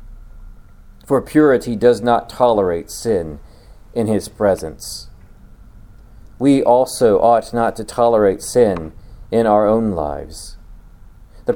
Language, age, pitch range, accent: English, 40-59, 105-165 Hz, American